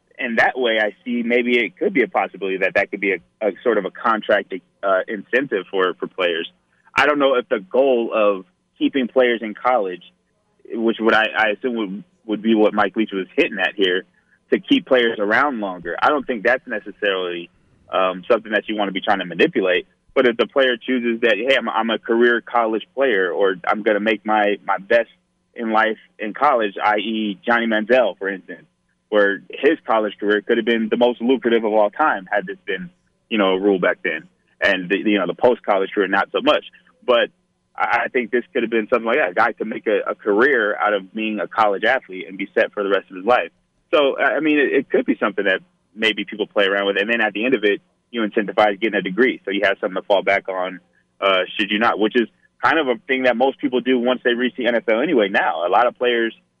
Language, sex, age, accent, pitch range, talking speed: English, male, 20-39, American, 100-120 Hz, 235 wpm